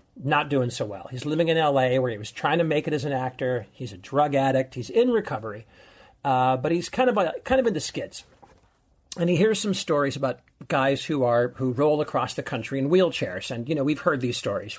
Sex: male